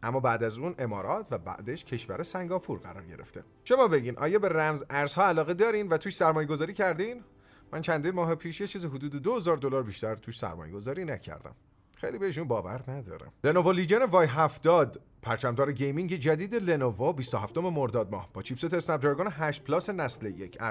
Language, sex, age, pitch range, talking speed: Persian, male, 30-49, 120-180 Hz, 175 wpm